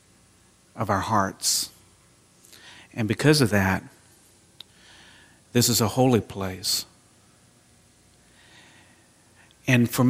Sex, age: male, 50-69